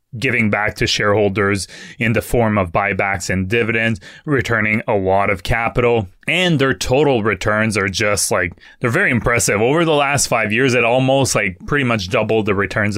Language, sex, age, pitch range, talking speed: English, male, 20-39, 105-125 Hz, 180 wpm